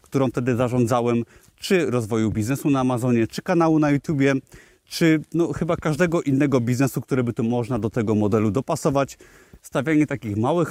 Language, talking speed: Polish, 155 wpm